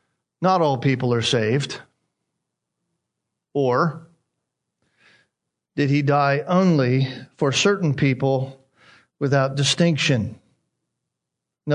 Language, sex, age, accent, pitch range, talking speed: English, male, 50-69, American, 140-180 Hz, 80 wpm